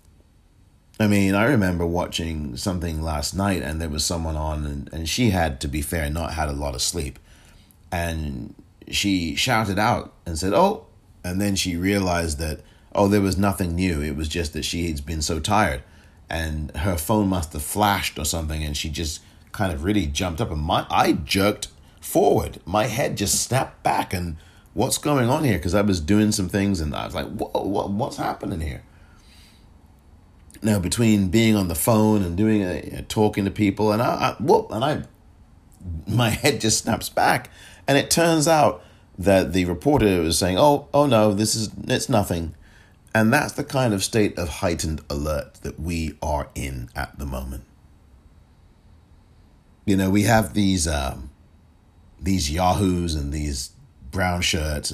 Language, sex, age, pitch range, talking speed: English, male, 30-49, 75-100 Hz, 180 wpm